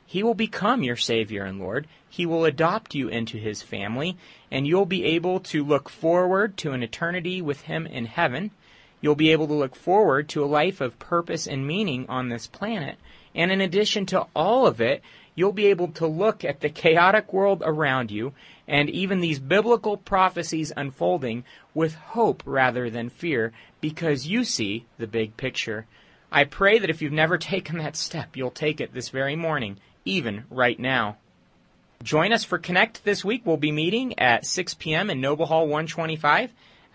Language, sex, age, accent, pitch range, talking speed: English, male, 30-49, American, 130-185 Hz, 185 wpm